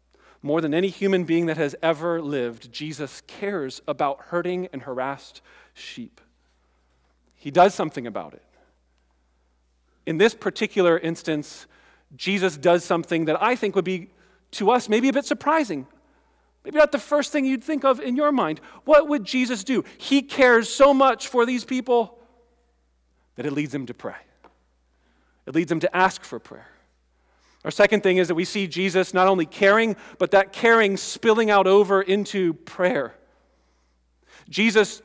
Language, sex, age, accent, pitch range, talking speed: English, male, 40-59, American, 125-200 Hz, 160 wpm